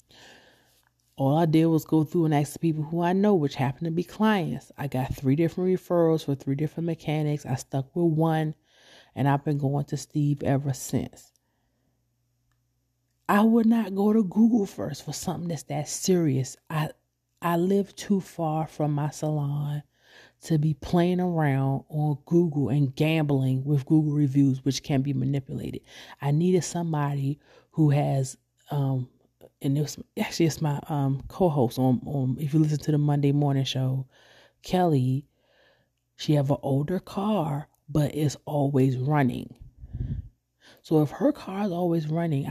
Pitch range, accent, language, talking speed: 135-165 Hz, American, English, 160 wpm